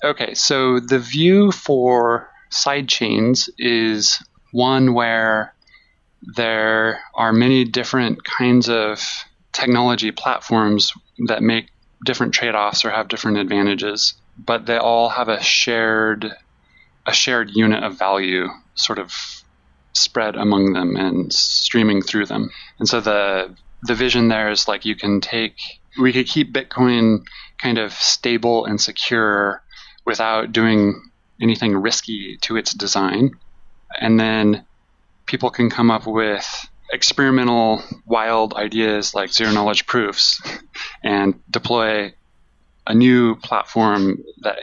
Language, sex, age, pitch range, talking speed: English, male, 20-39, 105-120 Hz, 125 wpm